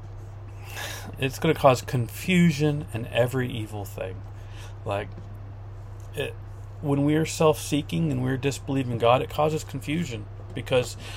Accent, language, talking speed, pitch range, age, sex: American, English, 125 wpm, 100-130 Hz, 40-59, male